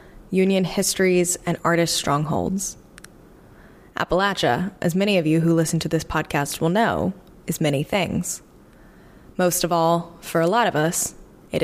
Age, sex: 20-39, female